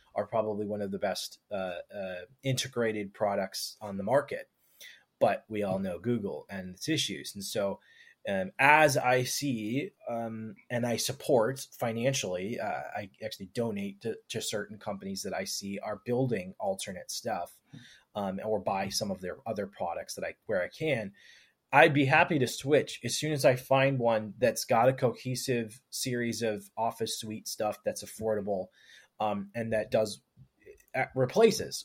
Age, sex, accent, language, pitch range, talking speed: 20-39, male, American, English, 105-130 Hz, 165 wpm